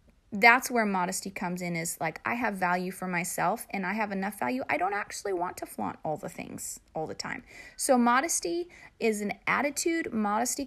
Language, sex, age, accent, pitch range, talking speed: English, female, 30-49, American, 195-265 Hz, 195 wpm